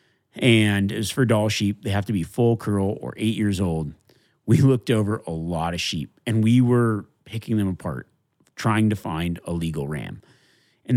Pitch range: 95-120 Hz